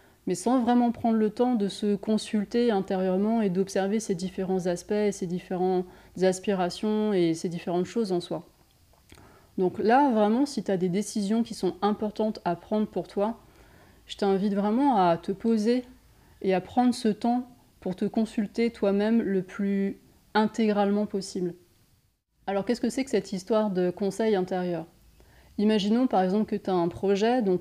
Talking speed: 165 wpm